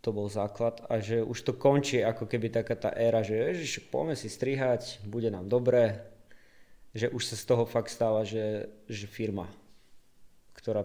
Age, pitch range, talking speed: 20-39, 105-120 Hz, 175 wpm